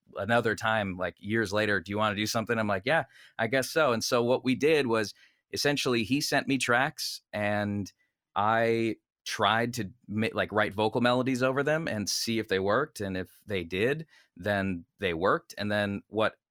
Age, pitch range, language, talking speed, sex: 20-39, 100-125 Hz, English, 195 wpm, male